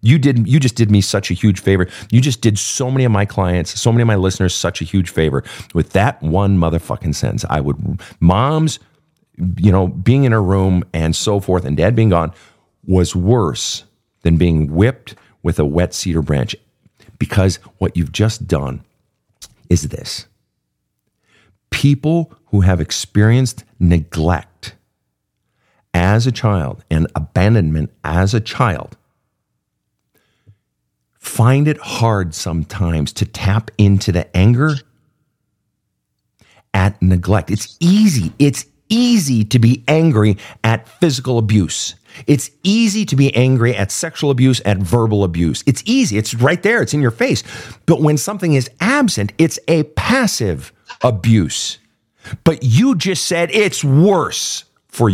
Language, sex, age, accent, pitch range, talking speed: English, male, 50-69, American, 90-130 Hz, 145 wpm